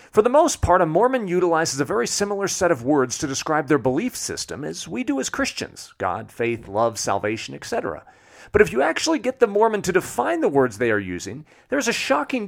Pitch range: 135-220 Hz